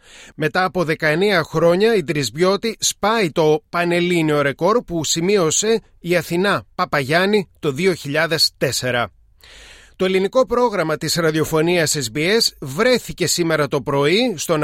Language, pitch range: Greek, 165-265 Hz